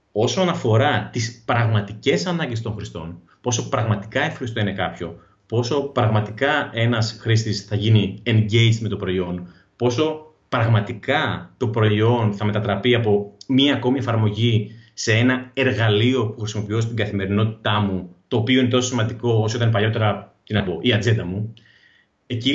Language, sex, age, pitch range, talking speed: Greek, male, 30-49, 100-130 Hz, 140 wpm